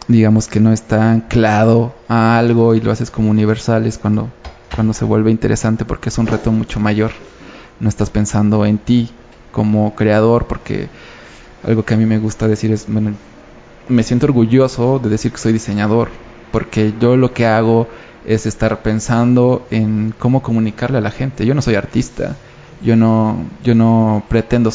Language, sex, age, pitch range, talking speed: Spanish, male, 20-39, 110-120 Hz, 175 wpm